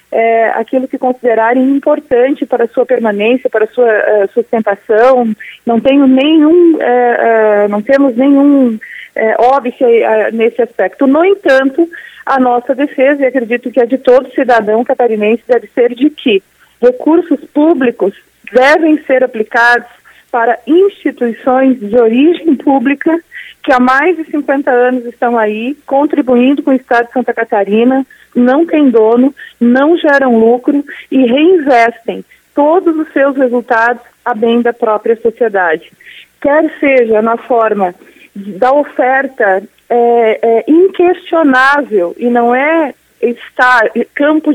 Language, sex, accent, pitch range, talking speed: Portuguese, female, Brazilian, 235-285 Hz, 130 wpm